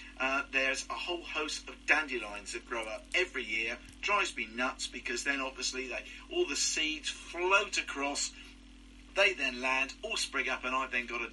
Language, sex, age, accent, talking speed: English, male, 50-69, British, 185 wpm